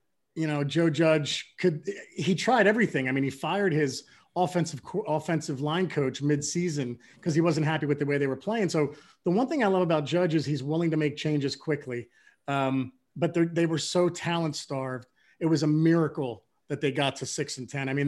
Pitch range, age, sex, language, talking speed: 140-165 Hz, 30-49, male, English, 210 wpm